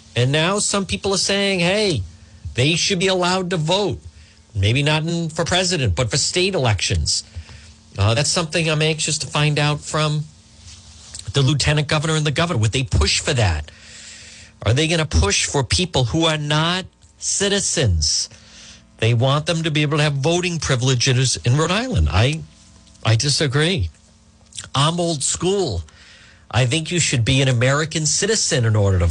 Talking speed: 170 wpm